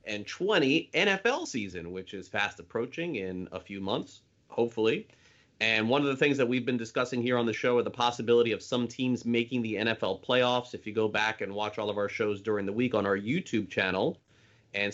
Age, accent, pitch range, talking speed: 30-49, American, 100-130 Hz, 215 wpm